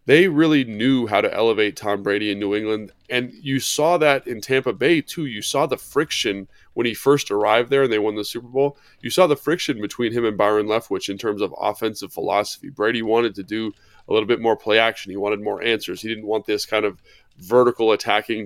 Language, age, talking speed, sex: English, 20-39, 230 wpm, male